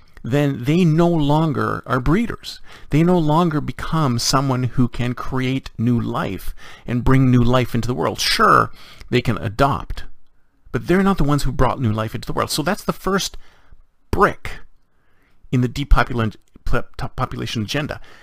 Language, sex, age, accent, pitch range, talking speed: English, male, 40-59, American, 110-150 Hz, 160 wpm